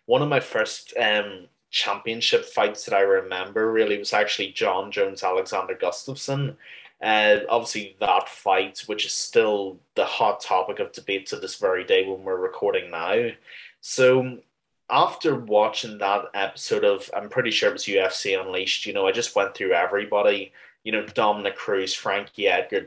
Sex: male